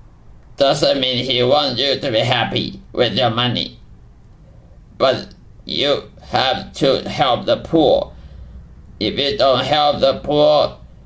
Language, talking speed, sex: English, 130 wpm, male